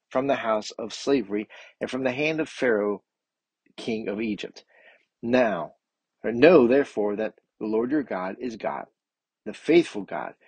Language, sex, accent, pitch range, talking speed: English, male, American, 105-130 Hz, 155 wpm